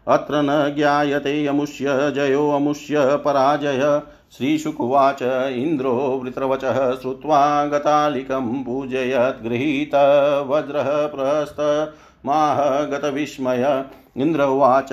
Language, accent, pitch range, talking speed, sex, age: Hindi, native, 135-150 Hz, 65 wpm, male, 50-69